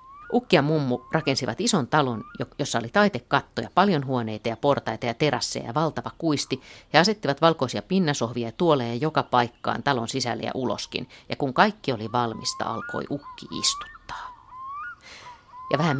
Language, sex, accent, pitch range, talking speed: Finnish, female, native, 115-160 Hz, 155 wpm